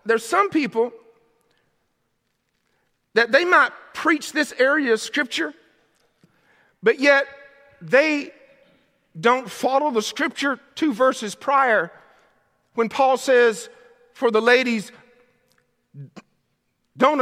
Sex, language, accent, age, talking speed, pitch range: male, English, American, 50-69, 100 wpm, 225-280 Hz